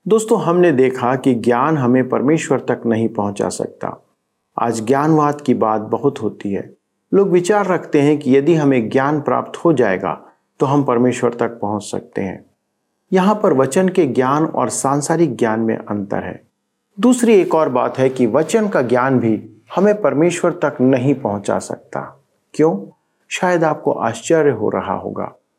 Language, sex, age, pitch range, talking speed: Hindi, male, 50-69, 120-175 Hz, 165 wpm